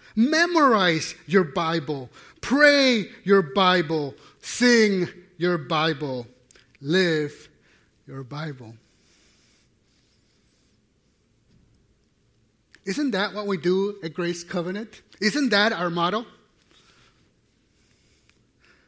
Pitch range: 140-190 Hz